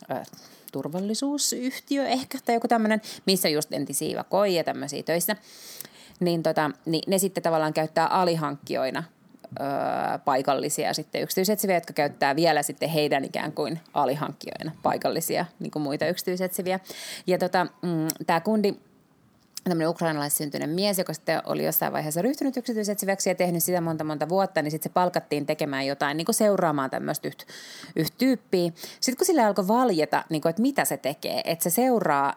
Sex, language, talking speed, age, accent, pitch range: female, Finnish, 150 wpm, 30-49, native, 155-215 Hz